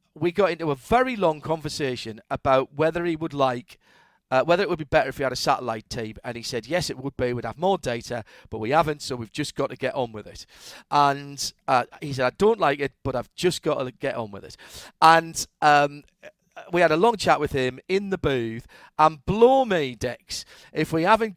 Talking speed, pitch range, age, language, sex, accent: 235 wpm, 130-180 Hz, 40-59, English, male, British